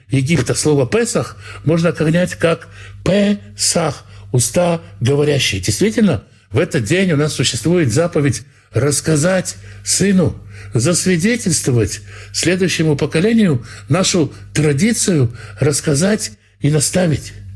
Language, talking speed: Russian, 90 wpm